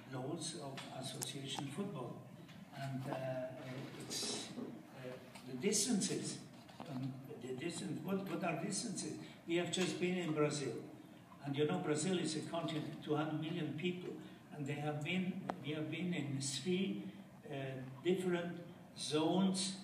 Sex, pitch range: male, 135-170 Hz